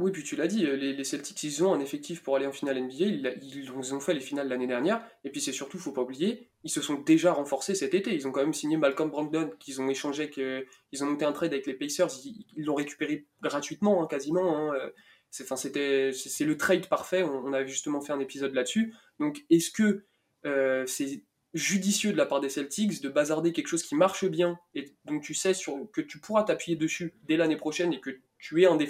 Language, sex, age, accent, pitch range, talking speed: French, male, 20-39, French, 140-180 Hz, 225 wpm